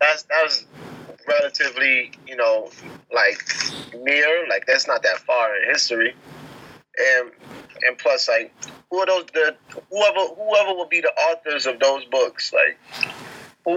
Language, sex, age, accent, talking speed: English, male, 20-39, American, 145 wpm